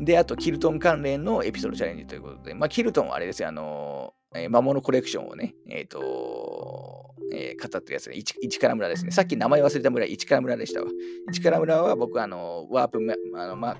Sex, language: male, Japanese